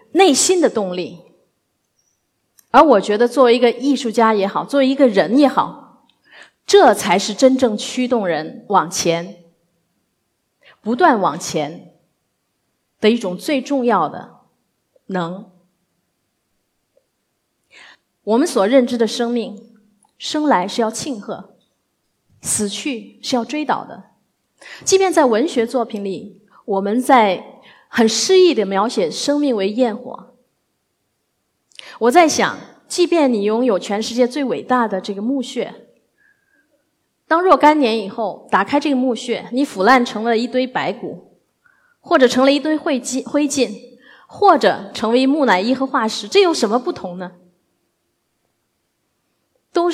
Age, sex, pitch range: 30-49, female, 210-280 Hz